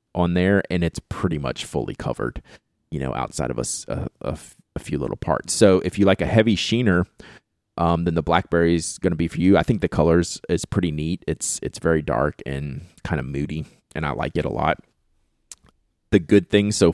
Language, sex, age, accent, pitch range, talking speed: English, male, 30-49, American, 75-95 Hz, 215 wpm